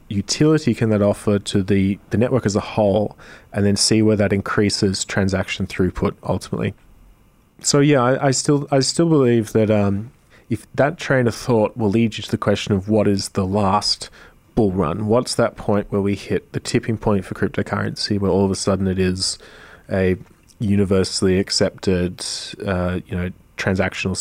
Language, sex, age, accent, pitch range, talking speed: English, male, 20-39, Australian, 95-115 Hz, 180 wpm